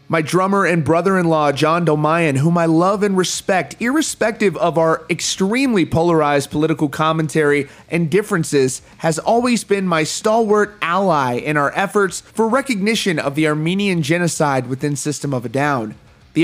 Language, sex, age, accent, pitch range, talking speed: English, male, 30-49, American, 155-200 Hz, 150 wpm